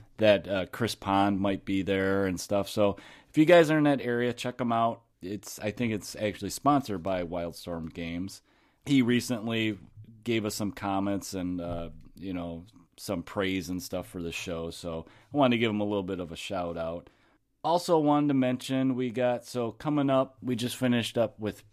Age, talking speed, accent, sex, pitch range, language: 30-49, 200 wpm, American, male, 95-120 Hz, English